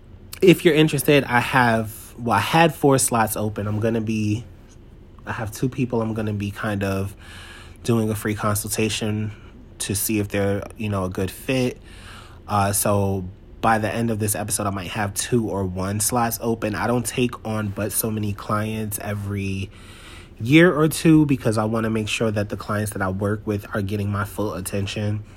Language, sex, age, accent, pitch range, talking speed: English, male, 30-49, American, 100-115 Hz, 200 wpm